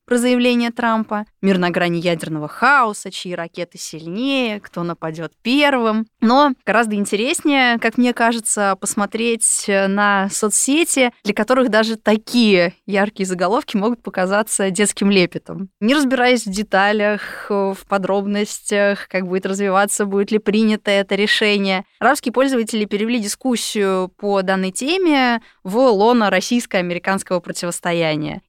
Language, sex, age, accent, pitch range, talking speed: Russian, female, 20-39, native, 185-240 Hz, 120 wpm